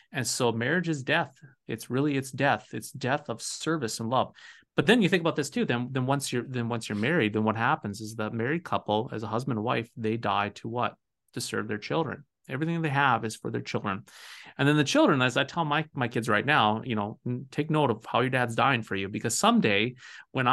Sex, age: male, 30-49